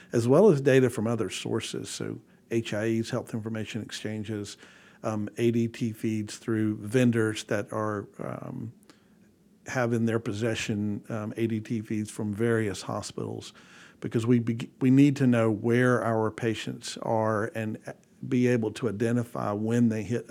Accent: American